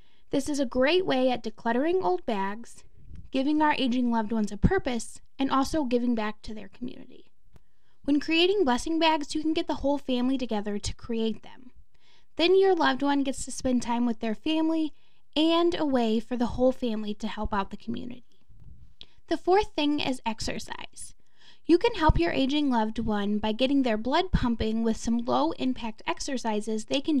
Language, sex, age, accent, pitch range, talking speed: English, female, 10-29, American, 225-300 Hz, 185 wpm